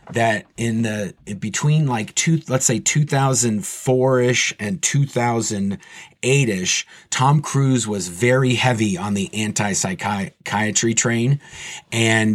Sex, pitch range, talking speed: male, 110-165 Hz, 120 wpm